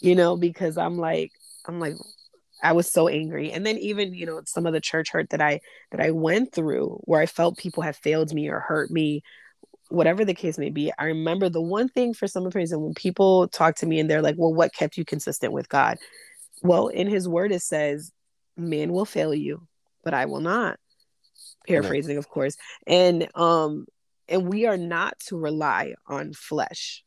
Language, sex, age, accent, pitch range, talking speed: English, female, 20-39, American, 155-180 Hz, 205 wpm